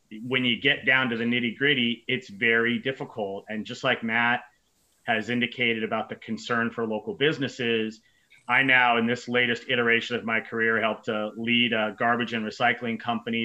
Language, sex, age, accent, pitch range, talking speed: English, male, 30-49, American, 110-125 Hz, 180 wpm